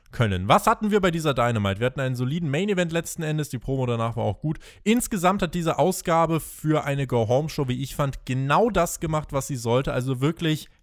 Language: German